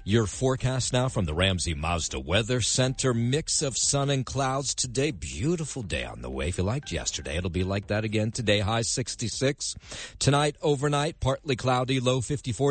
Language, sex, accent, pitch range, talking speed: English, male, American, 100-130 Hz, 180 wpm